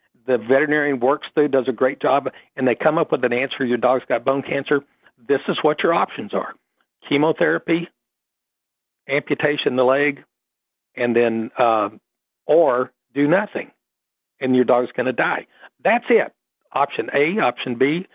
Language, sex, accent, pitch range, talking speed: English, male, American, 130-165 Hz, 160 wpm